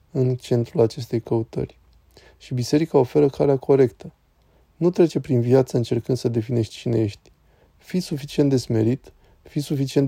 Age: 20-39